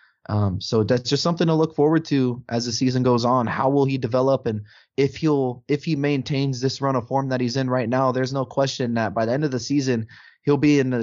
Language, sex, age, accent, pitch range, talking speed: English, male, 20-39, American, 115-140 Hz, 255 wpm